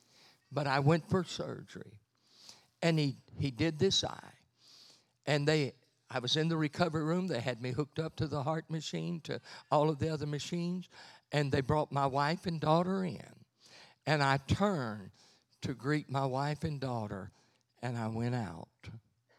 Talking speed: 170 wpm